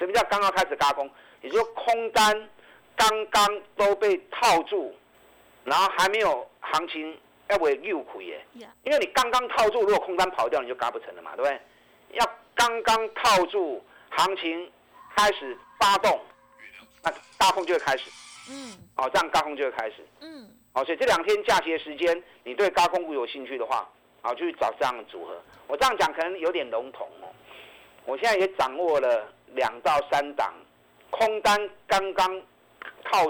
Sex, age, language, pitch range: male, 50-69, Chinese, 170-265 Hz